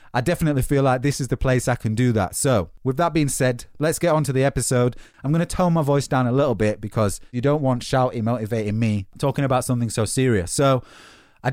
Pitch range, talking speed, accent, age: 120-150 Hz, 245 wpm, British, 30-49